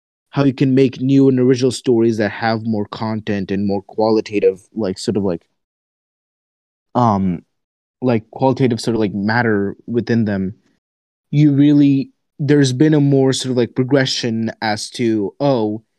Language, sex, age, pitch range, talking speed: Tamil, male, 20-39, 110-135 Hz, 155 wpm